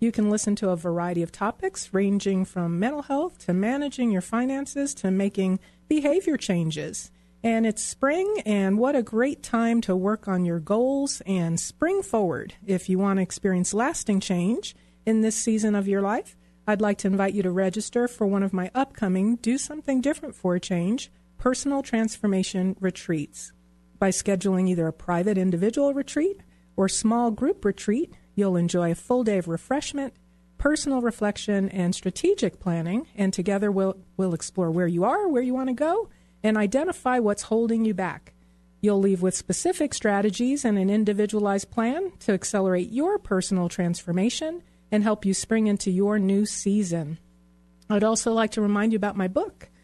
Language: English